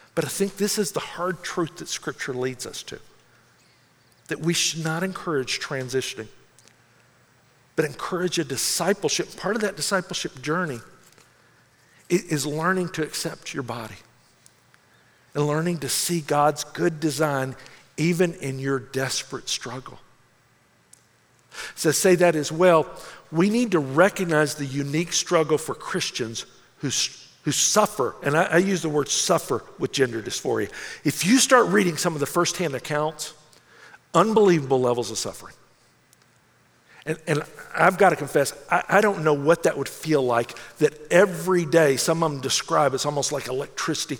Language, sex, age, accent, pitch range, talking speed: English, male, 50-69, American, 135-175 Hz, 150 wpm